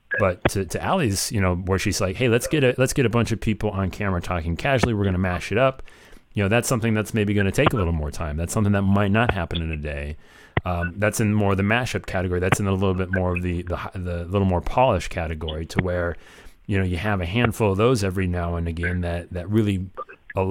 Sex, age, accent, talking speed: male, 30-49, American, 265 wpm